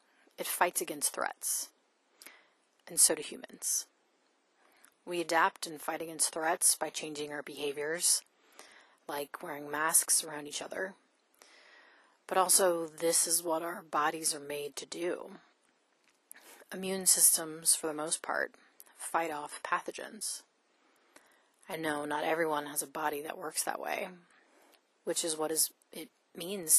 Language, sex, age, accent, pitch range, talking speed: English, female, 30-49, American, 150-170 Hz, 135 wpm